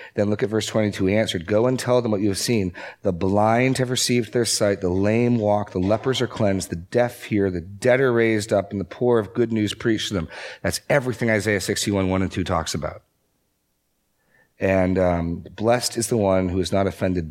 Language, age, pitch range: English, 40-59, 85-110 Hz